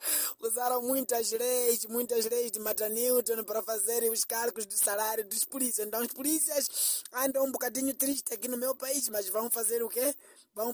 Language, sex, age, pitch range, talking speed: Portuguese, male, 20-39, 240-315 Hz, 185 wpm